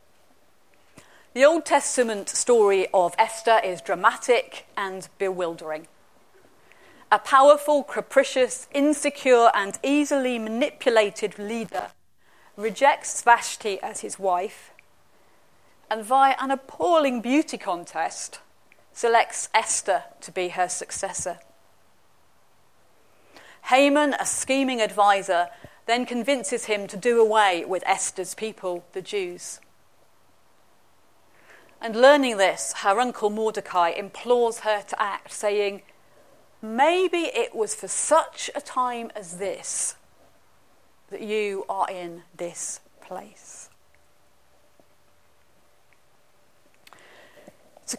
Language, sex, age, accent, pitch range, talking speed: English, female, 40-59, British, 185-260 Hz, 95 wpm